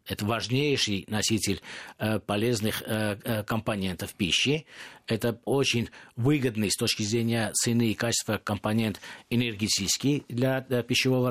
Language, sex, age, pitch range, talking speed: Russian, male, 50-69, 110-125 Hz, 100 wpm